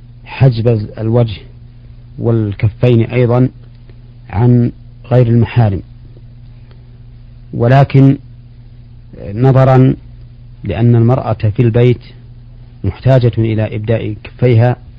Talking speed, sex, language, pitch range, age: 70 wpm, male, Arabic, 115-125 Hz, 50-69